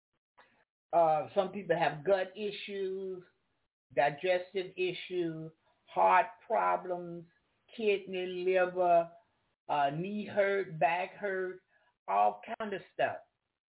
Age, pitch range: 60-79, 160-195 Hz